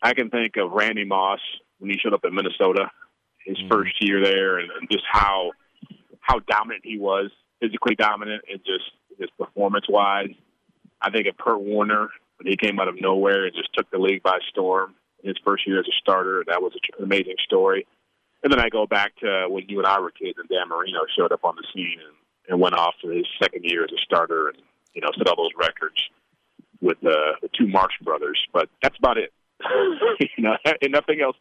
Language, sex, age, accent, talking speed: English, male, 30-49, American, 210 wpm